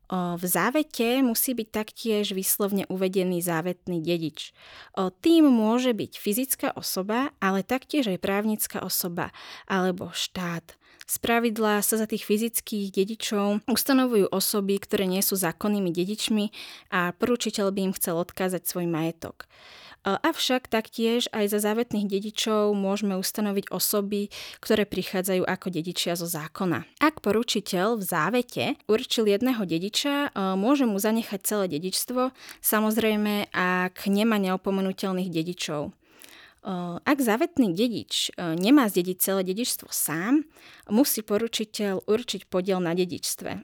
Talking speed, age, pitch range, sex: 120 wpm, 20-39, 180-225 Hz, female